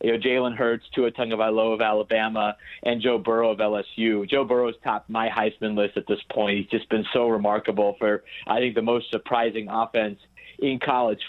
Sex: male